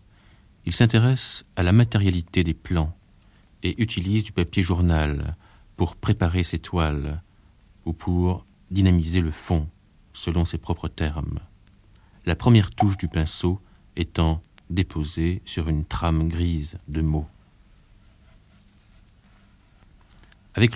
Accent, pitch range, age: French, 80-100 Hz, 50-69